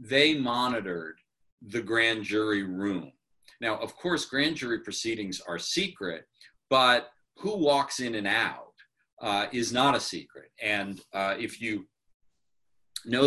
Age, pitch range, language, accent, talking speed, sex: 40-59, 95-130 Hz, English, American, 135 wpm, male